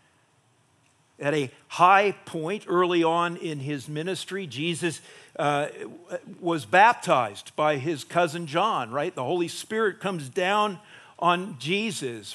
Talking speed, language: 120 wpm, English